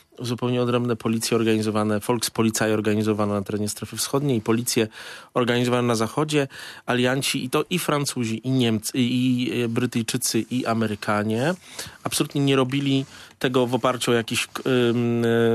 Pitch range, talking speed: 115-145 Hz, 130 wpm